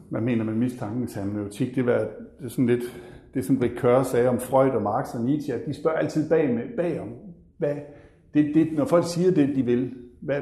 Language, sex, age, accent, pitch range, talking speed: Danish, male, 60-79, native, 120-150 Hz, 200 wpm